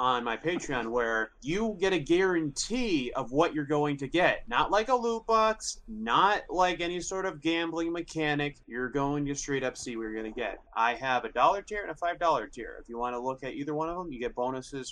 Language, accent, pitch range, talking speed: English, American, 110-150 Hz, 235 wpm